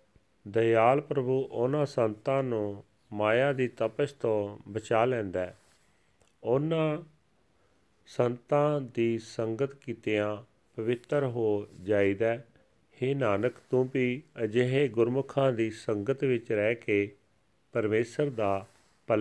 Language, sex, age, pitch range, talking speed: Punjabi, male, 40-59, 100-125 Hz, 105 wpm